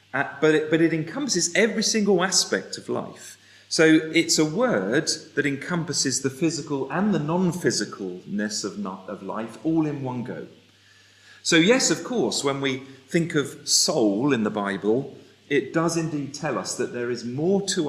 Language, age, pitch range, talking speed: English, 40-59, 115-165 Hz, 170 wpm